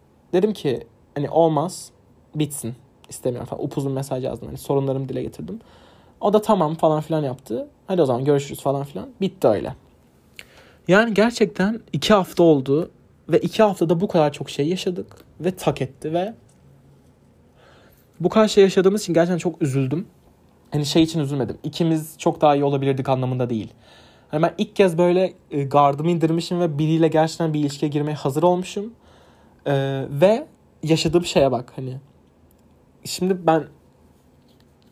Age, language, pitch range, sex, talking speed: 30-49, Turkish, 130-175 Hz, male, 150 wpm